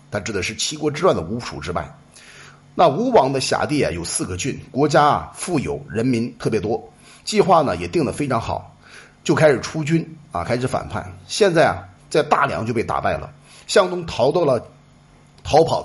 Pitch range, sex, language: 110-160 Hz, male, Chinese